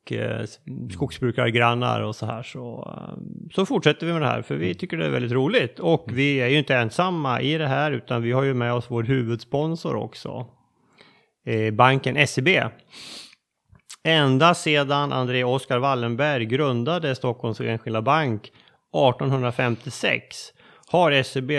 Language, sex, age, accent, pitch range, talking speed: Swedish, male, 30-49, native, 125-150 Hz, 140 wpm